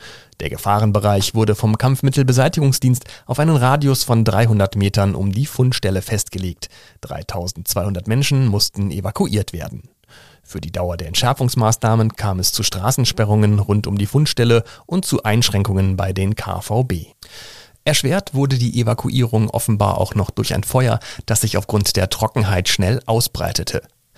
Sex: male